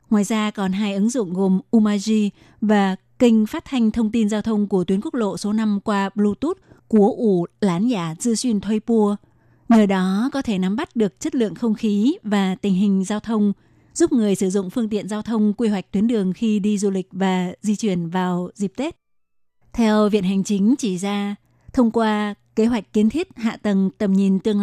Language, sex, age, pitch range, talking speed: Vietnamese, female, 20-39, 200-225 Hz, 210 wpm